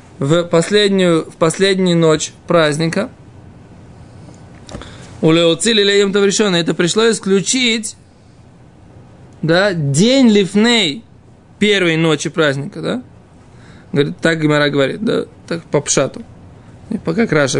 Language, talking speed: Russian, 100 wpm